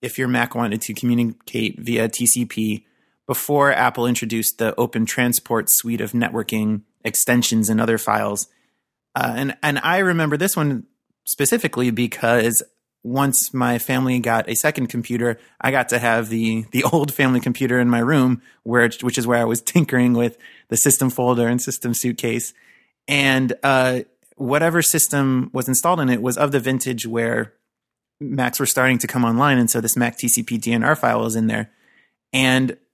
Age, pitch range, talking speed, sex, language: 30-49, 120-135 Hz, 170 wpm, male, English